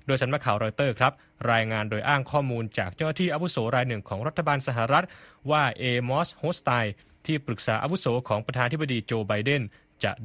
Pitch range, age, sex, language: 110-145 Hz, 20-39, male, Thai